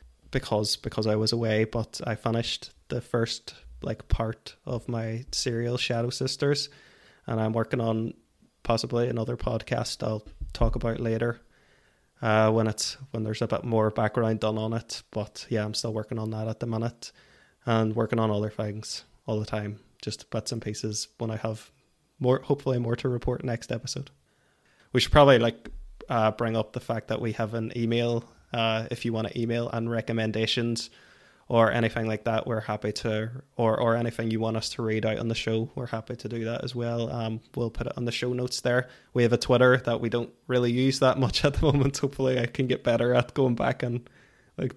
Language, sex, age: English, male, 20-39